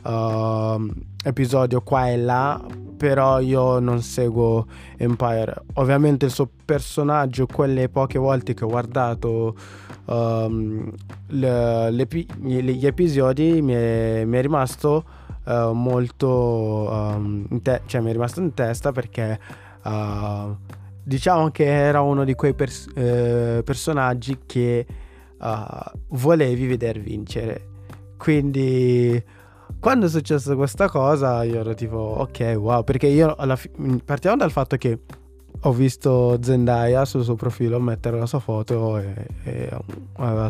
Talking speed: 130 wpm